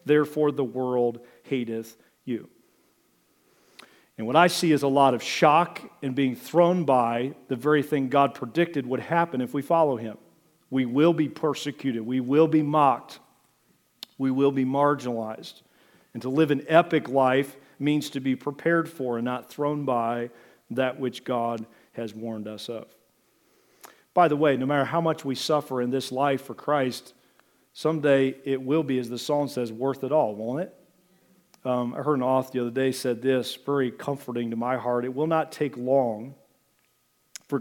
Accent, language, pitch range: American, English, 125-150 Hz